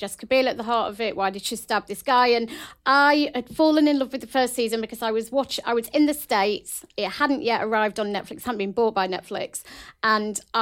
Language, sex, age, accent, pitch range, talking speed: English, female, 40-59, British, 210-255 Hz, 250 wpm